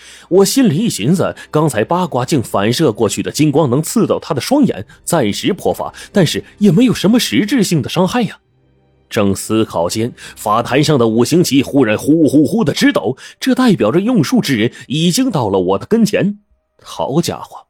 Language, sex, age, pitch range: Chinese, male, 30-49, 110-180 Hz